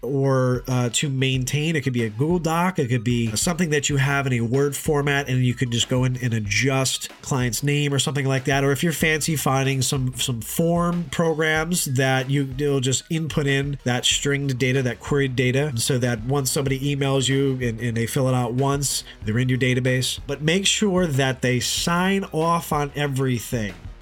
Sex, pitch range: male, 130-155 Hz